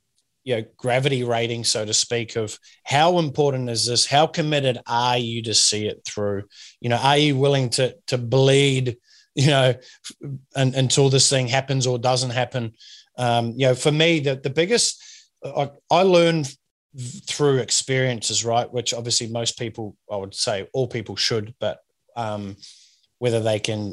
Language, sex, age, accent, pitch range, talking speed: English, male, 20-39, Australian, 115-140 Hz, 170 wpm